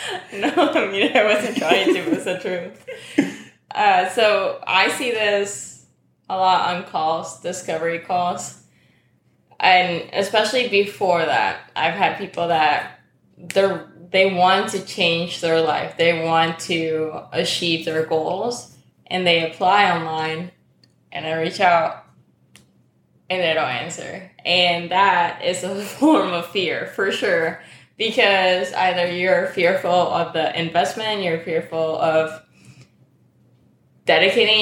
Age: 10-29